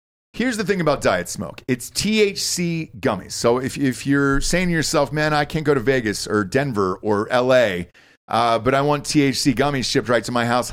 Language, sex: English, male